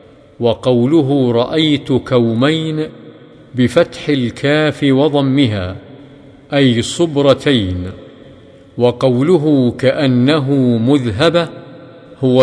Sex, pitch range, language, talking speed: male, 125-150 Hz, Arabic, 60 wpm